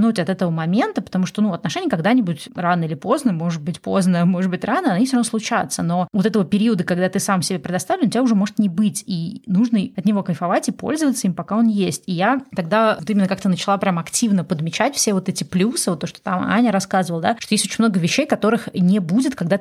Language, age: Russian, 20-39